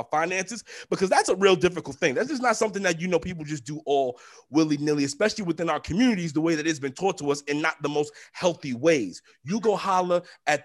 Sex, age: male, 30-49